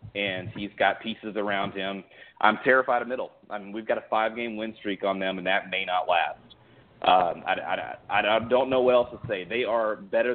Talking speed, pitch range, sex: 225 wpm, 100-120 Hz, male